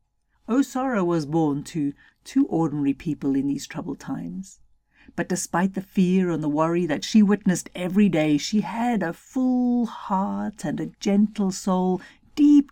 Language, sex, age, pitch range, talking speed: English, female, 50-69, 145-205 Hz, 155 wpm